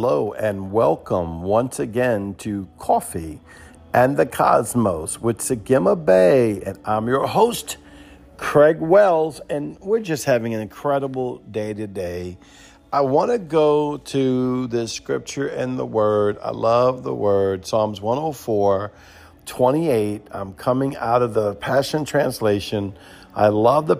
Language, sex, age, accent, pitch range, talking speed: English, male, 50-69, American, 105-130 Hz, 135 wpm